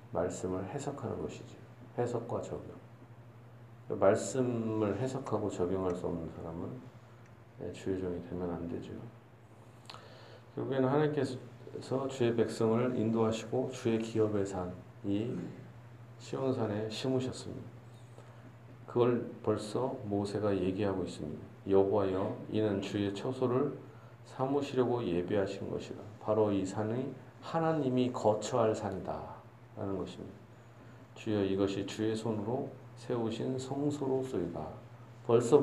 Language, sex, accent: Korean, male, native